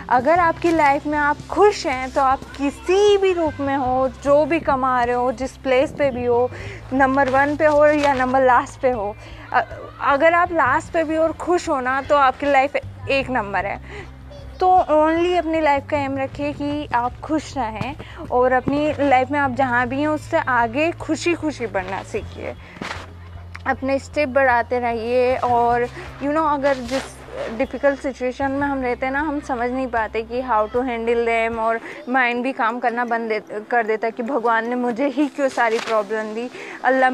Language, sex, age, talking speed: Hindi, female, 20-39, 195 wpm